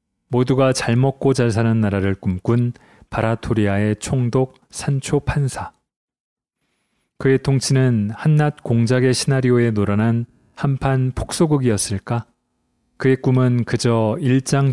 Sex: male